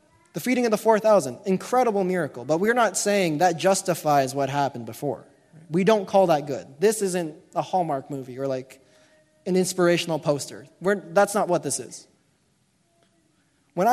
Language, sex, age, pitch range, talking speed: English, male, 20-39, 145-195 Hz, 160 wpm